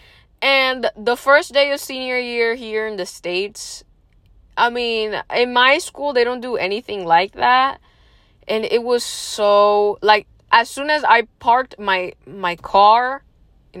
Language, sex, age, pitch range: English, female, 20-39, 205-275 Hz